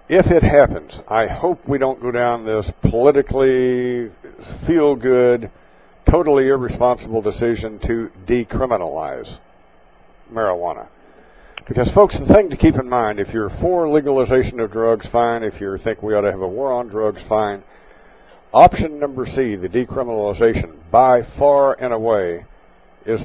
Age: 60-79